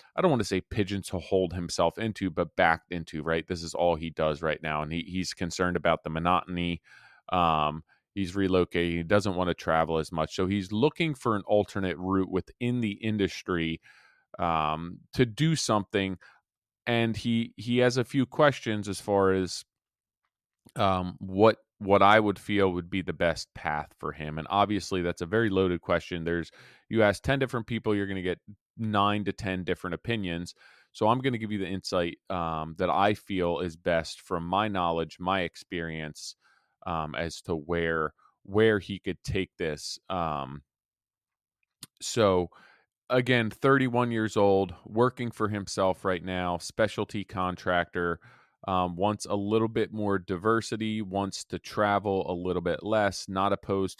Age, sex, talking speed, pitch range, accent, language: 30-49, male, 170 wpm, 85-105 Hz, American, English